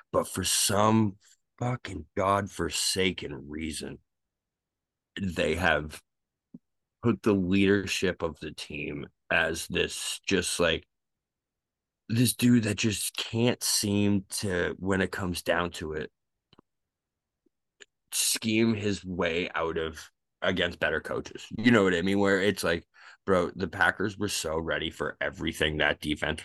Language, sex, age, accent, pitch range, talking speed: English, male, 20-39, American, 80-100 Hz, 130 wpm